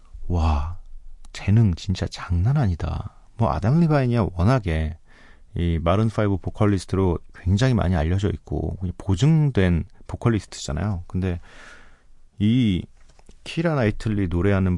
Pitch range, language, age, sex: 85-115 Hz, Korean, 40-59, male